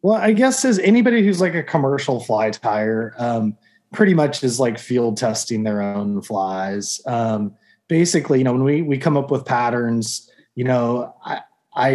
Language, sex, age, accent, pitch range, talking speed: English, male, 20-39, American, 120-145 Hz, 175 wpm